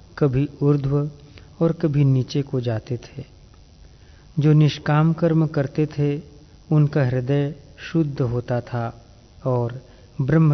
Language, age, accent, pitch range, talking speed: Hindi, 40-59, native, 115-145 Hz, 115 wpm